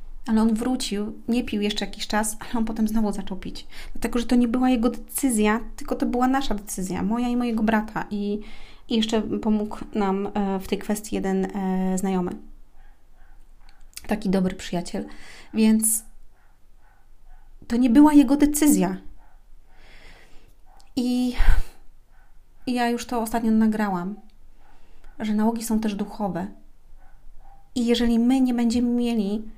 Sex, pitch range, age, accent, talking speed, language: female, 200-240 Hz, 30-49, native, 135 wpm, Polish